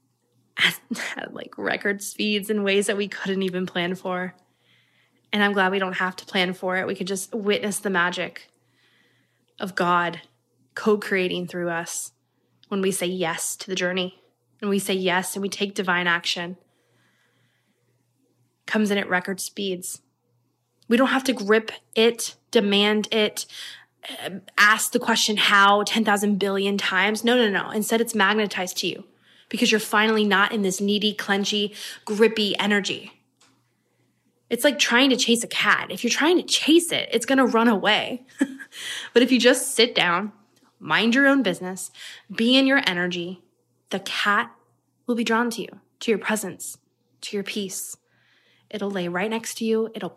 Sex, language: female, English